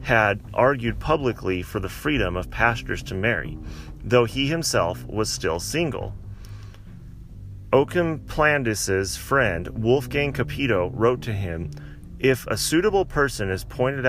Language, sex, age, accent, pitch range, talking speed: English, male, 30-49, American, 95-125 Hz, 125 wpm